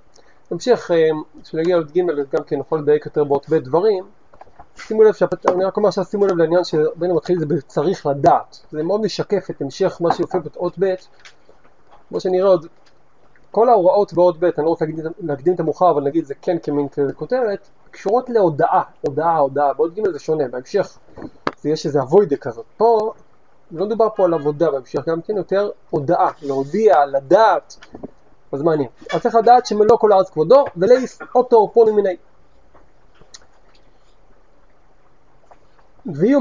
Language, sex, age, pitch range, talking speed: Hebrew, male, 30-49, 155-215 Hz, 165 wpm